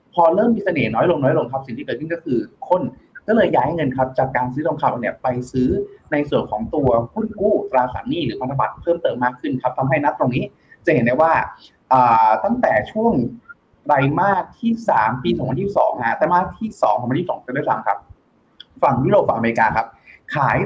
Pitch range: 125-180 Hz